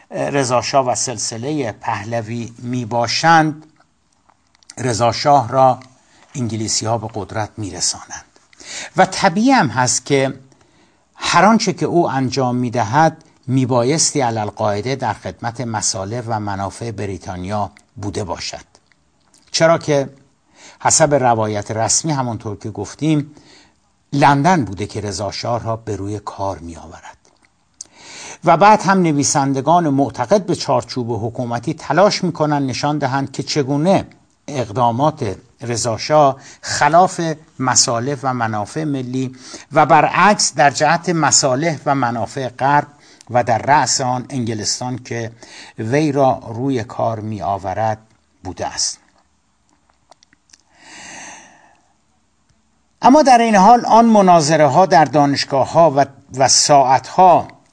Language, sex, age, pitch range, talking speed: Persian, male, 60-79, 115-150 Hz, 115 wpm